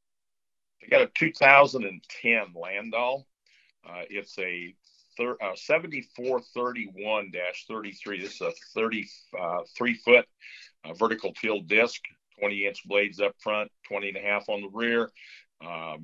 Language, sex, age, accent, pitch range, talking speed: English, male, 50-69, American, 95-120 Hz, 130 wpm